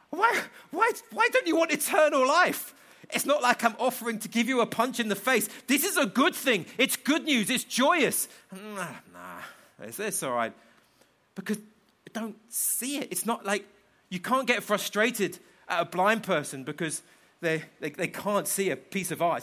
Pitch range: 195-245 Hz